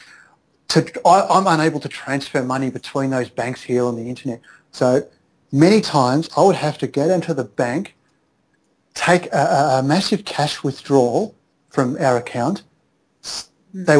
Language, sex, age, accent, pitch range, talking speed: English, male, 40-59, Australian, 140-180 Hz, 140 wpm